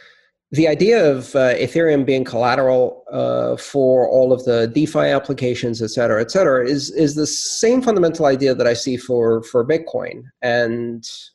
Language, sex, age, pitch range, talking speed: English, male, 40-59, 115-150 Hz, 165 wpm